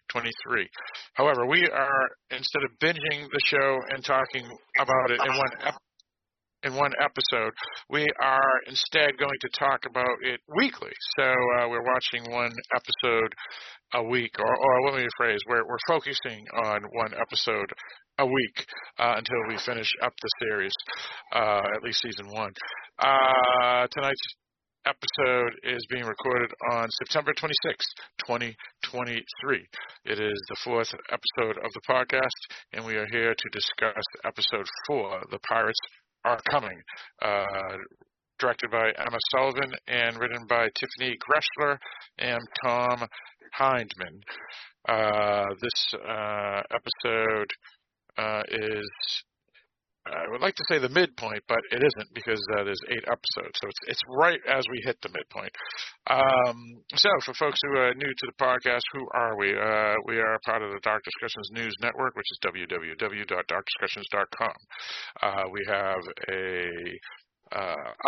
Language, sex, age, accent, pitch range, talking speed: English, male, 50-69, American, 110-135 Hz, 145 wpm